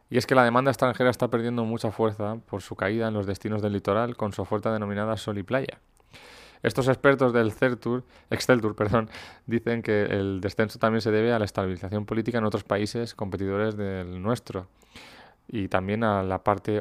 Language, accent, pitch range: Spanish, Spanish, 105-120 Hz